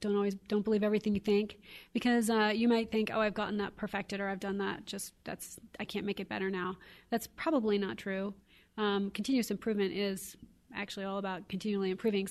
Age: 30-49